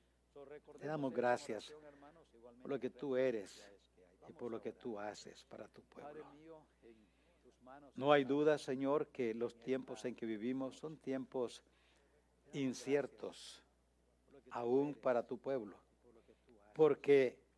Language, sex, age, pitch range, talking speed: English, male, 60-79, 125-155 Hz, 120 wpm